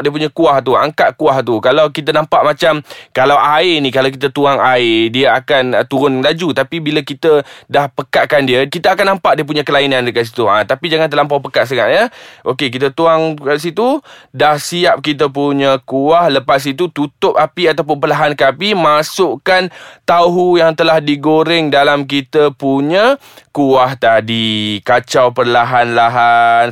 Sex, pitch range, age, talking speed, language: male, 125-160 Hz, 20-39, 160 wpm, Malay